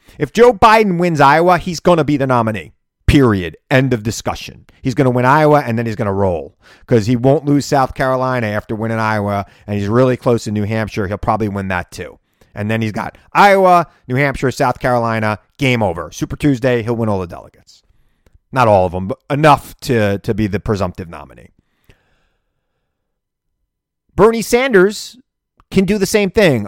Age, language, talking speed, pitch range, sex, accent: 30-49, English, 190 wpm, 105-155 Hz, male, American